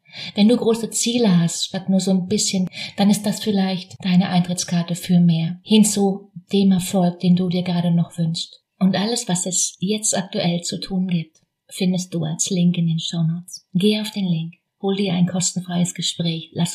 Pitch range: 175-195 Hz